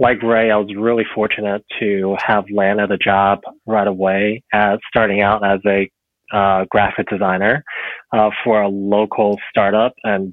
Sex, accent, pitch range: male, American, 100-110 Hz